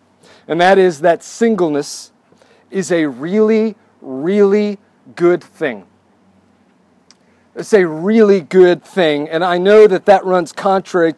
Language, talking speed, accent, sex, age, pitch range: English, 125 wpm, American, male, 40-59, 165-205 Hz